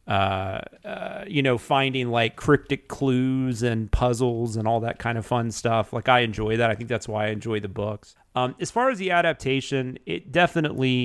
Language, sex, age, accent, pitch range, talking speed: English, male, 30-49, American, 110-140 Hz, 200 wpm